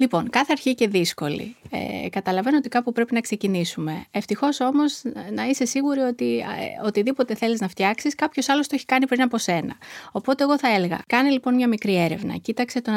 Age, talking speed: 20-39, 190 wpm